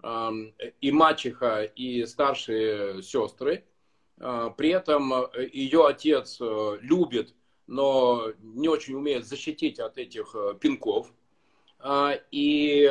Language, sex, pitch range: Russian, male, 125-160 Hz